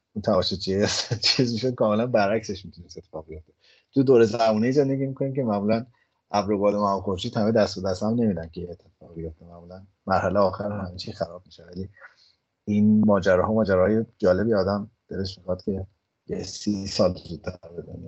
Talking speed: 150 wpm